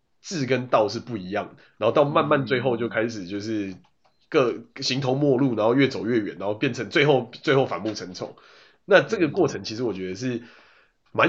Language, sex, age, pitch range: Chinese, male, 20-39, 105-135 Hz